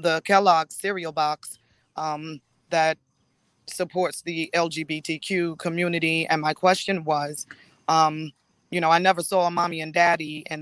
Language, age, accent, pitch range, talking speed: English, 20-39, American, 160-180 Hz, 140 wpm